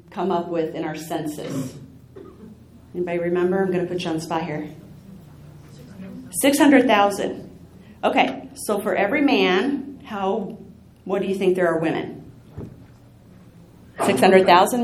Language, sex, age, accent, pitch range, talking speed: English, female, 40-59, American, 190-265 Hz, 130 wpm